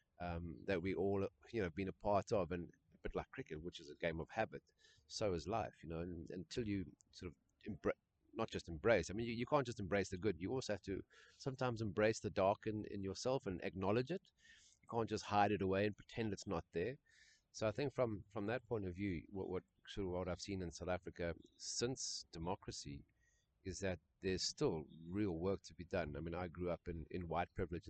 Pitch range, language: 85-100 Hz, English